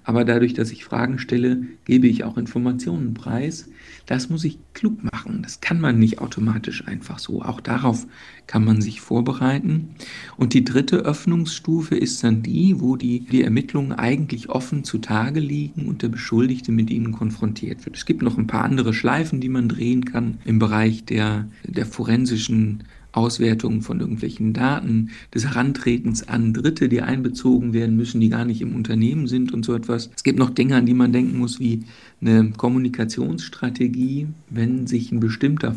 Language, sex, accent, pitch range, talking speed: German, male, German, 115-135 Hz, 175 wpm